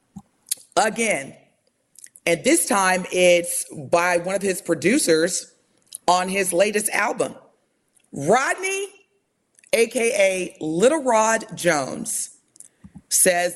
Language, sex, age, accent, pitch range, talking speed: English, female, 40-59, American, 160-220 Hz, 90 wpm